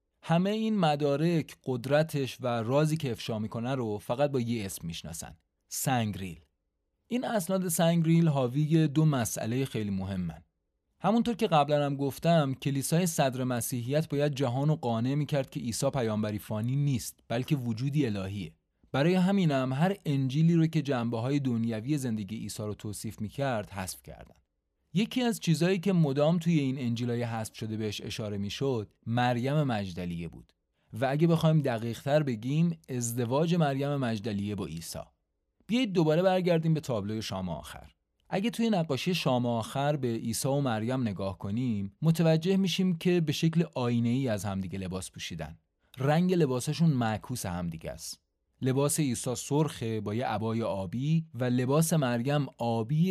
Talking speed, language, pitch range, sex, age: 150 wpm, Persian, 105-155 Hz, male, 30-49